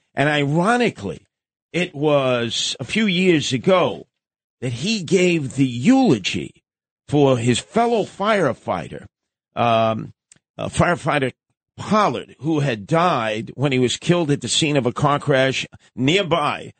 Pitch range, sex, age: 115-145 Hz, male, 50-69